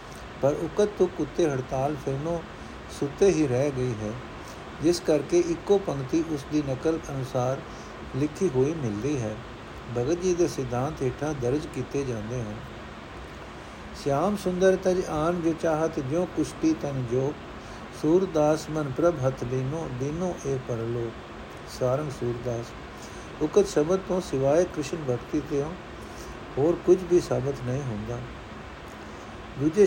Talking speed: 125 wpm